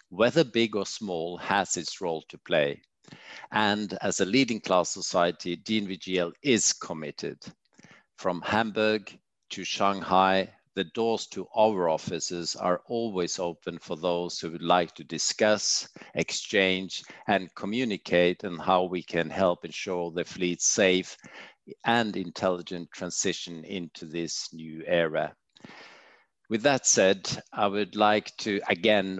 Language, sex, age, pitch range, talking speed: English, male, 50-69, 85-100 Hz, 130 wpm